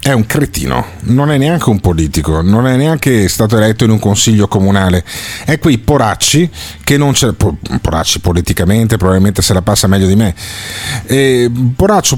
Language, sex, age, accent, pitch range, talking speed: Italian, male, 40-59, native, 100-140 Hz, 170 wpm